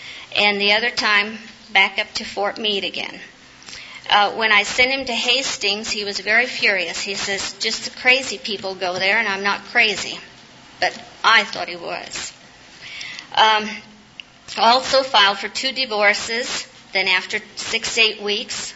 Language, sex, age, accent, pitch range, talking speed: English, female, 50-69, American, 195-225 Hz, 155 wpm